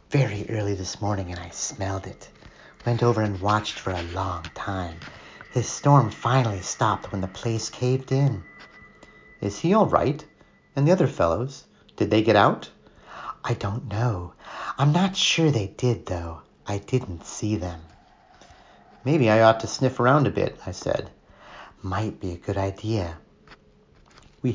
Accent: American